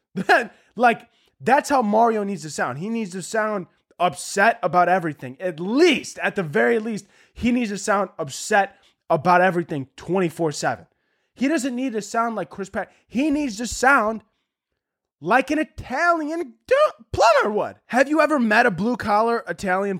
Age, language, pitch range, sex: 20-39, English, 160-225 Hz, male